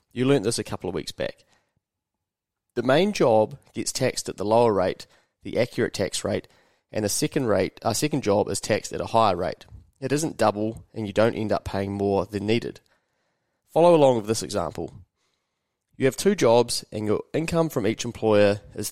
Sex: male